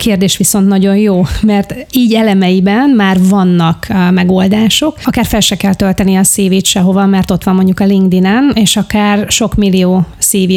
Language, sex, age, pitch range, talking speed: Hungarian, female, 30-49, 185-210 Hz, 175 wpm